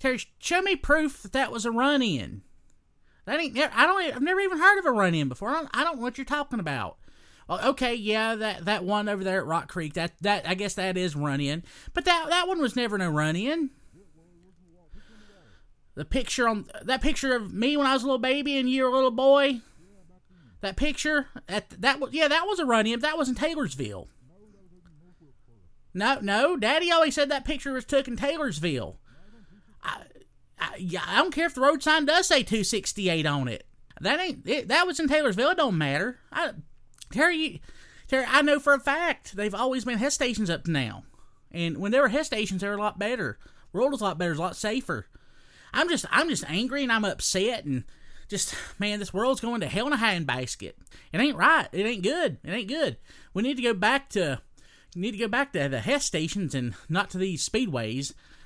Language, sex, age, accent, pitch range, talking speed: English, male, 30-49, American, 180-280 Hz, 220 wpm